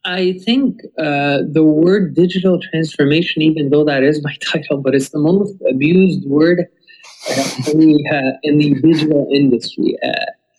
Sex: male